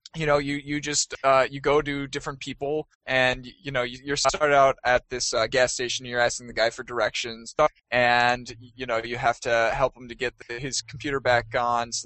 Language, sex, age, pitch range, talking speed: English, male, 10-29, 125-155 Hz, 225 wpm